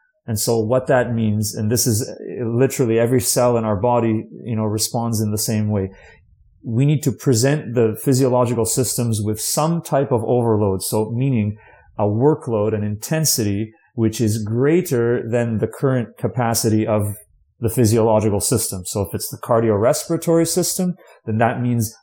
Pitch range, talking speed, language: 115-140 Hz, 160 wpm, English